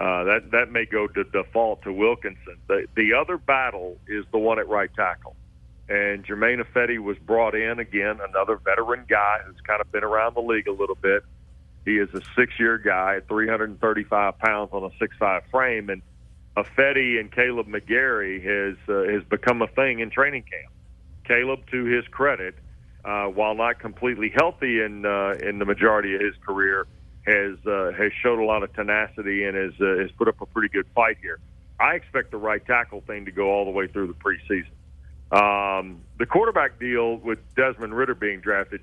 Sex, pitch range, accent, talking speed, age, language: male, 100-120 Hz, American, 190 wpm, 40-59, English